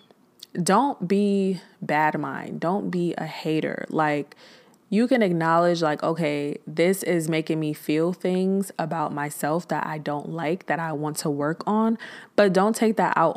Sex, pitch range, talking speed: female, 155-205 Hz, 165 wpm